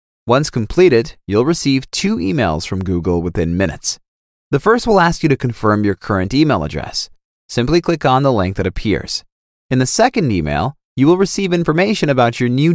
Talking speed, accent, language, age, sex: 185 wpm, American, German, 30-49, male